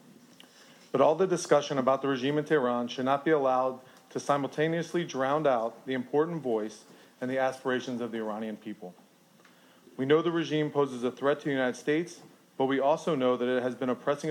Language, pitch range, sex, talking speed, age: English, 120-155 Hz, male, 195 wpm, 40-59